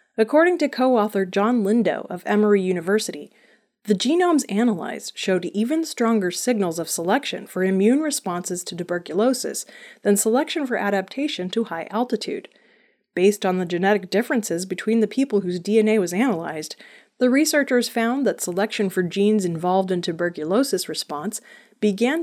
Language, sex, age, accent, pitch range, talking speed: English, female, 30-49, American, 185-240 Hz, 145 wpm